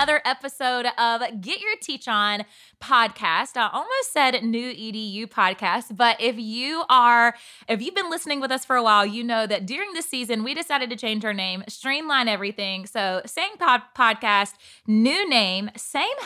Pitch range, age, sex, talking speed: 200-255 Hz, 20-39, female, 175 wpm